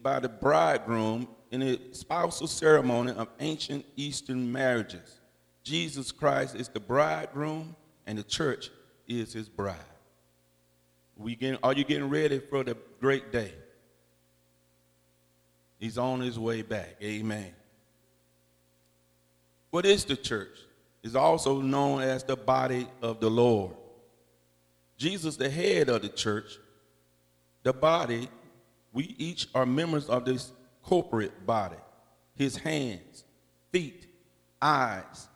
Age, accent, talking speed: 50-69, American, 120 wpm